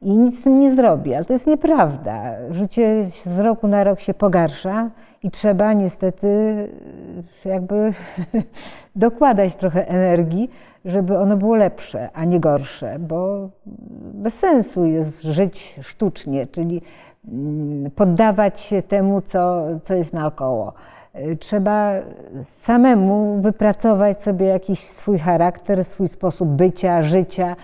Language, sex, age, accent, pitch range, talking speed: Polish, female, 50-69, native, 175-225 Hz, 120 wpm